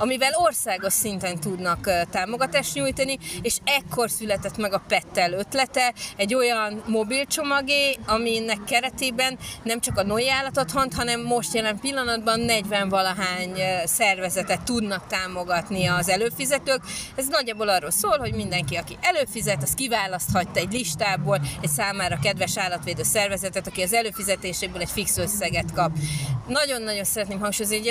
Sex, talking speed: female, 135 wpm